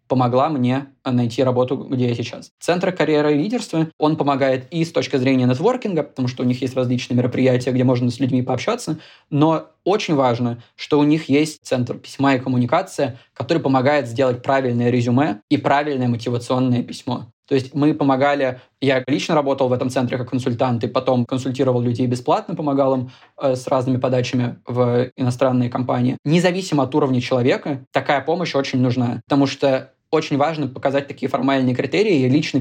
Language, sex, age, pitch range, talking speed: Russian, male, 20-39, 125-145 Hz, 170 wpm